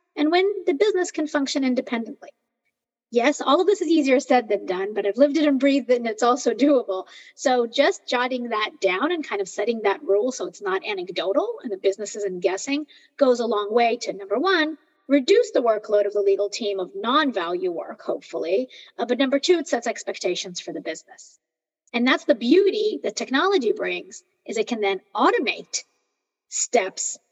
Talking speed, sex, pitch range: 190 wpm, female, 205-295 Hz